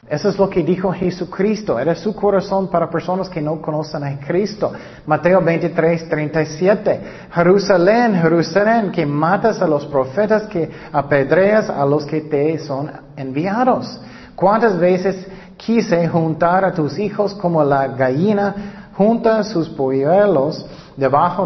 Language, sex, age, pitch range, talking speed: Spanish, male, 40-59, 135-190 Hz, 135 wpm